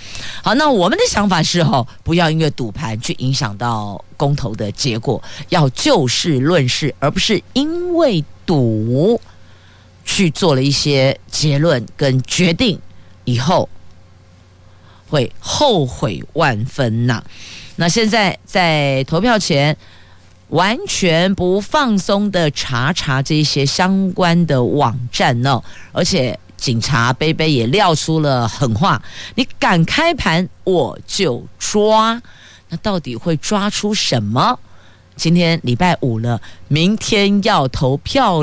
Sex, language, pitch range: female, Chinese, 115-175 Hz